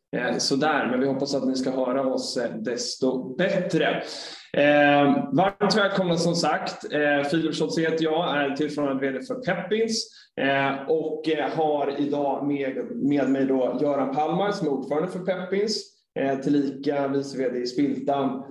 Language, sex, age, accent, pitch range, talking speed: Swedish, male, 20-39, native, 135-170 Hz, 150 wpm